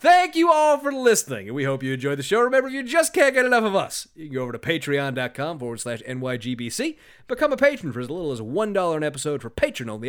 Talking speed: 250 wpm